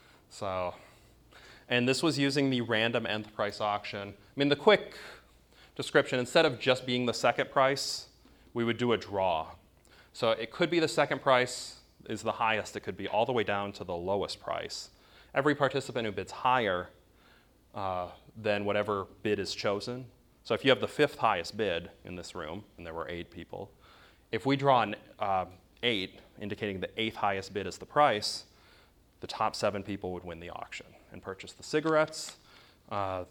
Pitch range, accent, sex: 95-125 Hz, American, male